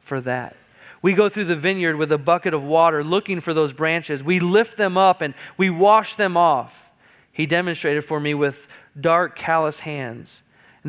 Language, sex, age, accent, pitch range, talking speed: English, male, 40-59, American, 145-175 Hz, 185 wpm